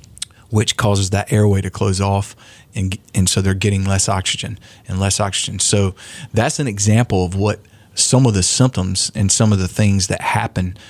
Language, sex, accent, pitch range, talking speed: English, male, American, 95-110 Hz, 185 wpm